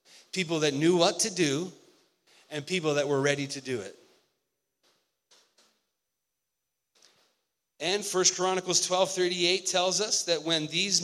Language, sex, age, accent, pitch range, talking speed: English, male, 40-59, American, 155-205 Hz, 130 wpm